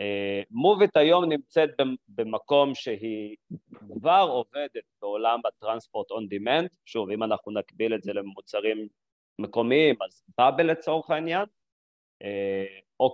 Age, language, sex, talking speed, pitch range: 30-49, English, male, 130 wpm, 100-160 Hz